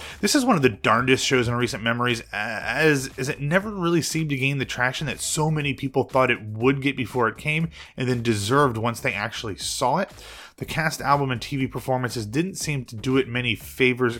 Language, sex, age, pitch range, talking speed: English, male, 30-49, 115-140 Hz, 215 wpm